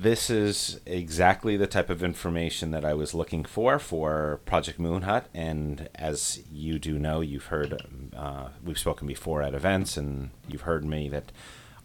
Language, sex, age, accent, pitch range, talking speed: English, male, 40-59, American, 75-90 Hz, 170 wpm